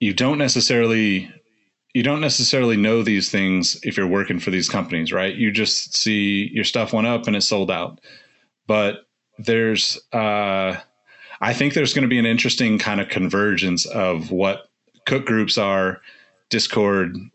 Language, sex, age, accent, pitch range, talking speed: English, male, 30-49, American, 95-115 Hz, 165 wpm